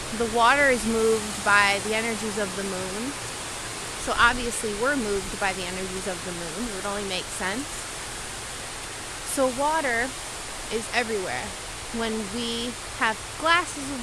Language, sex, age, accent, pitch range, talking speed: English, female, 20-39, American, 210-250 Hz, 145 wpm